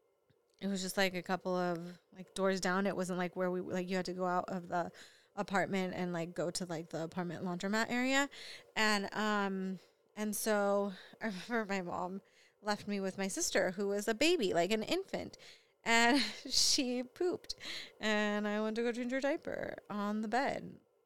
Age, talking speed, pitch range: 20-39, 190 wpm, 185-245 Hz